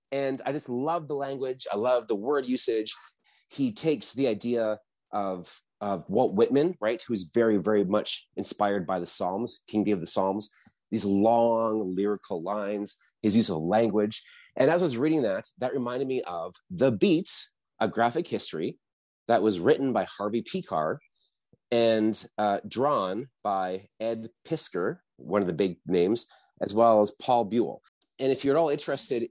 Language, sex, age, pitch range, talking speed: English, male, 30-49, 100-130 Hz, 170 wpm